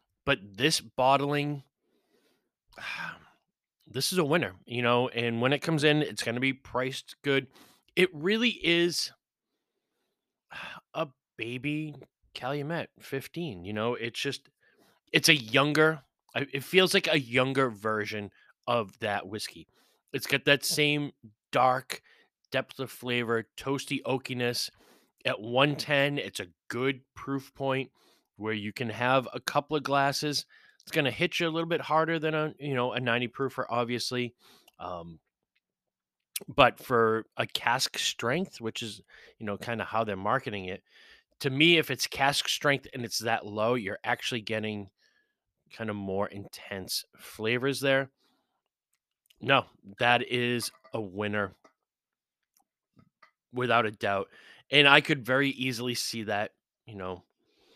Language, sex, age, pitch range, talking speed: English, male, 20-39, 115-145 Hz, 140 wpm